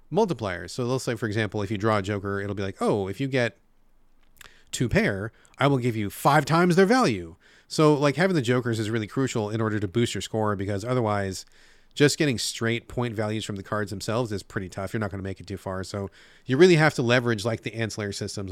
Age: 30-49